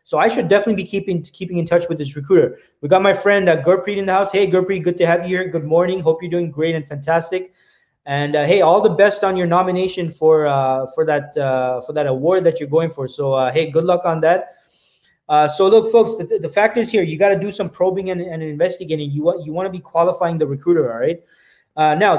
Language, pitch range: English, 155-185 Hz